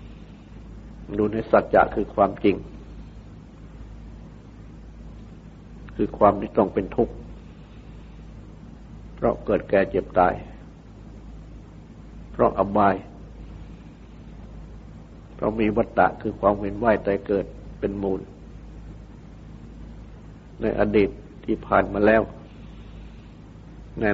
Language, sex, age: Thai, male, 60-79